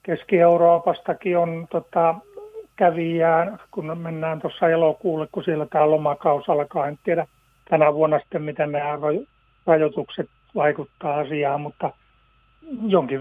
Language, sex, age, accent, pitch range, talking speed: Finnish, male, 60-79, native, 140-165 Hz, 115 wpm